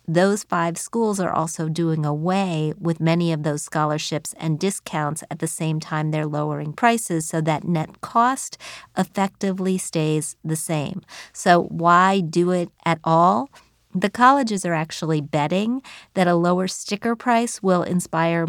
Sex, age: female, 40-59